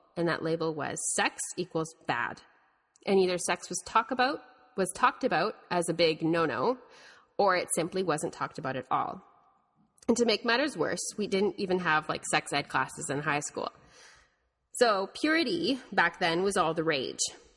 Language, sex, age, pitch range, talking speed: English, female, 30-49, 155-205 Hz, 170 wpm